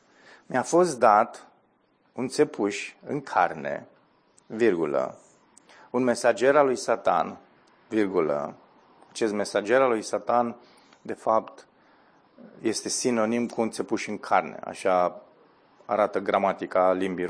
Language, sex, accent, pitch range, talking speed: Romanian, male, native, 110-150 Hz, 110 wpm